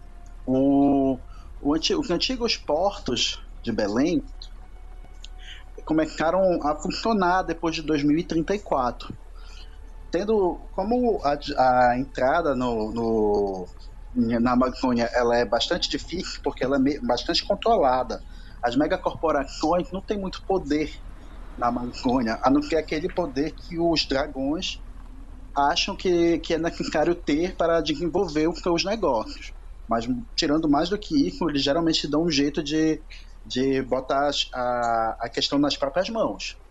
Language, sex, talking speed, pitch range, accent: Portuguese, male, 130 wpm, 125-195 Hz, Brazilian